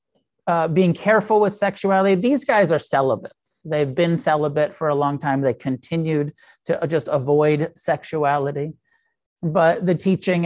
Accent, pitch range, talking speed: American, 145-185 Hz, 145 wpm